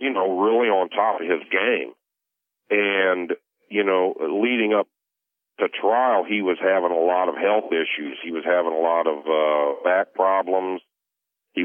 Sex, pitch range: male, 85-105 Hz